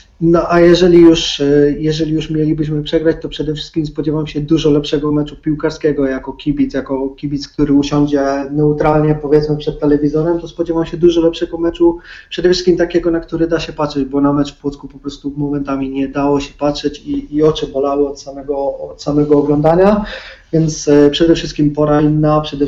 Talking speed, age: 180 wpm, 30-49